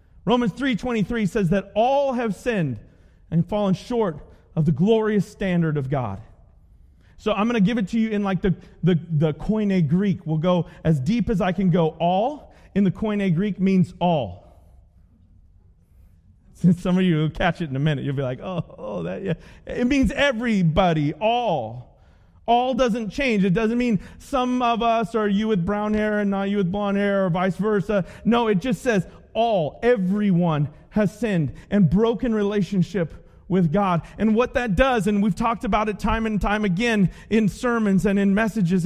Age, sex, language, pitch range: 30-49, male, English, 160-220 Hz